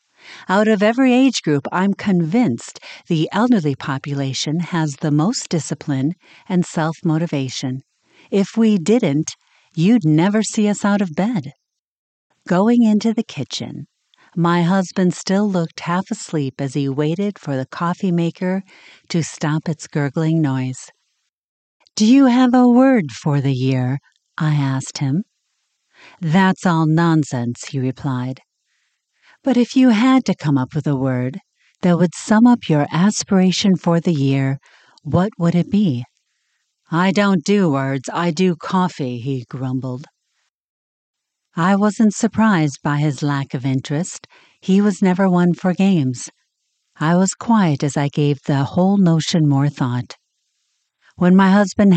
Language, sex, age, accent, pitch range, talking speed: English, female, 50-69, American, 145-195 Hz, 145 wpm